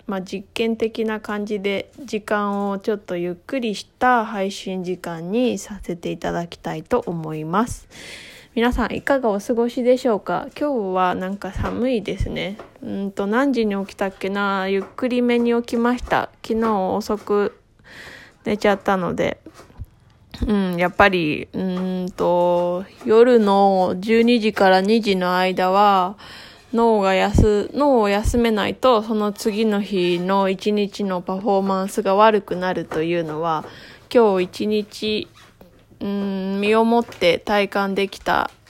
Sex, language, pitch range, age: female, Japanese, 190-230 Hz, 20-39